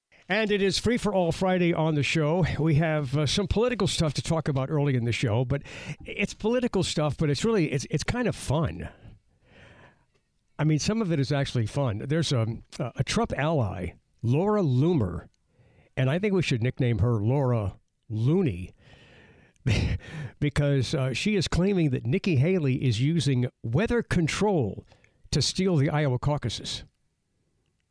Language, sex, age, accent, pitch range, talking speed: English, male, 60-79, American, 110-150 Hz, 165 wpm